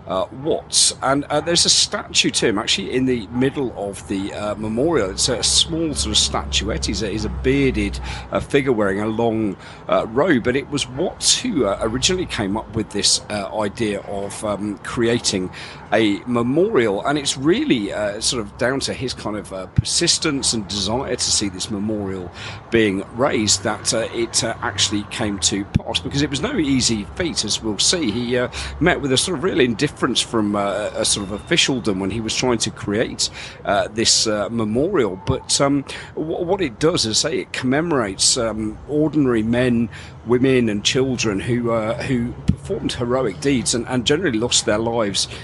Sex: male